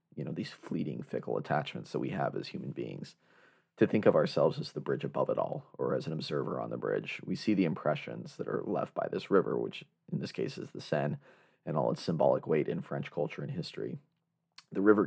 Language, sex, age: English, male, 30-49